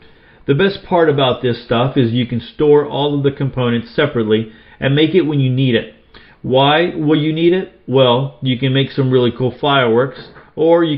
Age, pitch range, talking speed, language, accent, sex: 40-59, 110-130 Hz, 200 wpm, English, American, male